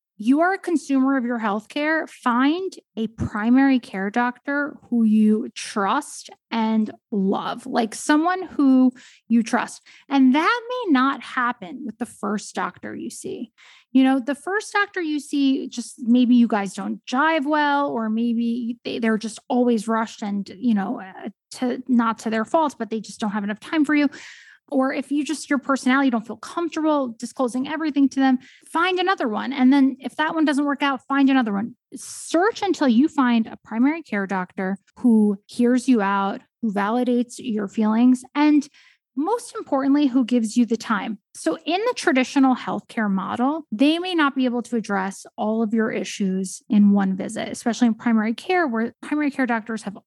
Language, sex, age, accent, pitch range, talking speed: English, female, 10-29, American, 220-280 Hz, 180 wpm